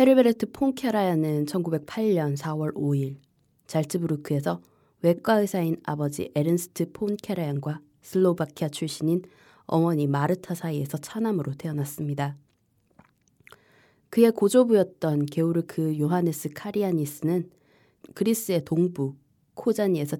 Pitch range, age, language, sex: 140-185 Hz, 20-39, Korean, female